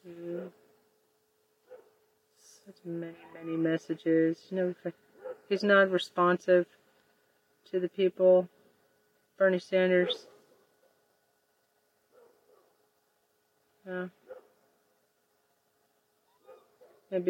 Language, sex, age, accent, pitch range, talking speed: English, female, 40-59, American, 170-205 Hz, 60 wpm